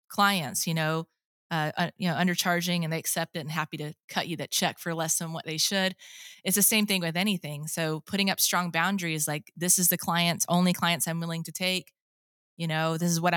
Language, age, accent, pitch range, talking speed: English, 20-39, American, 165-185 Hz, 235 wpm